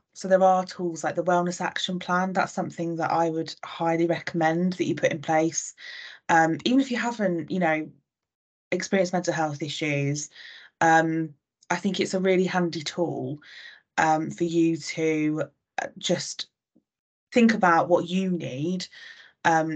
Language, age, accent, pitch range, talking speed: English, 20-39, British, 155-175 Hz, 155 wpm